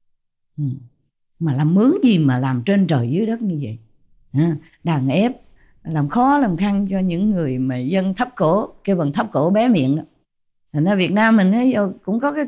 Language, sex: English, female